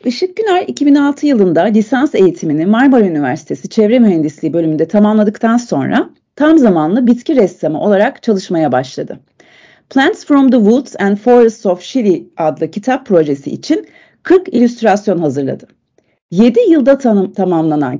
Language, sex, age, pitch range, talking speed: Turkish, female, 40-59, 180-260 Hz, 130 wpm